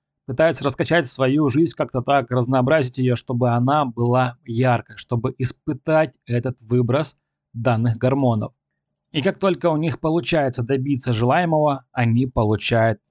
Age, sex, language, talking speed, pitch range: 20-39, male, Russian, 130 wpm, 120-145 Hz